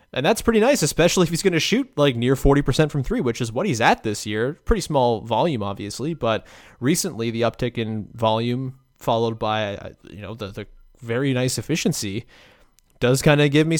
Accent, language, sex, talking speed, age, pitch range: American, English, male, 200 wpm, 20-39, 115-160 Hz